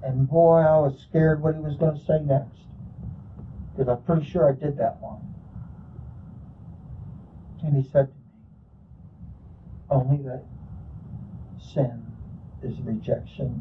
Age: 60-79